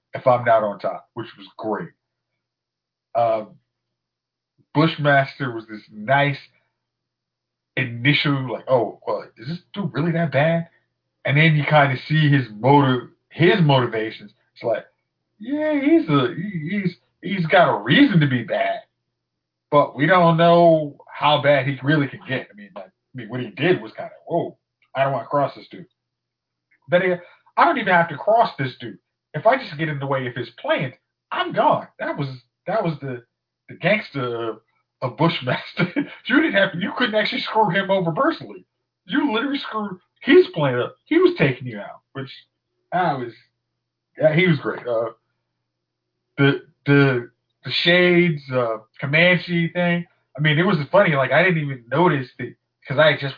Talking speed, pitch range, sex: 175 wpm, 125-175 Hz, male